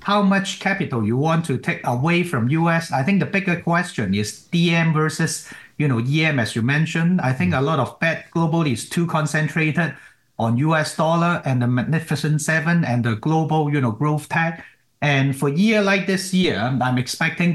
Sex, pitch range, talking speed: male, 125-170 Hz, 195 wpm